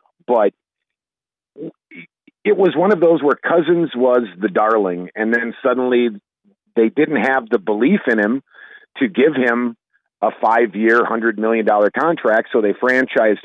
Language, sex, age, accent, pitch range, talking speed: English, male, 50-69, American, 105-130 Hz, 145 wpm